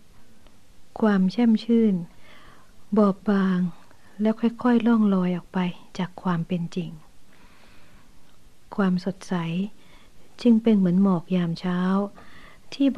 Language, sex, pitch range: Thai, female, 180-220 Hz